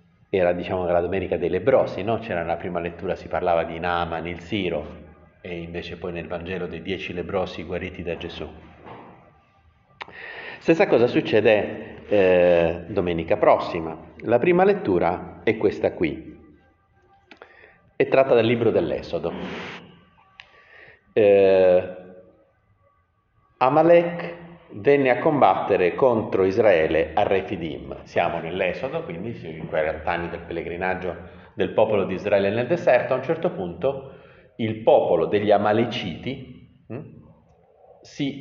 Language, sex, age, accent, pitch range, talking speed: Italian, male, 50-69, native, 85-135 Hz, 120 wpm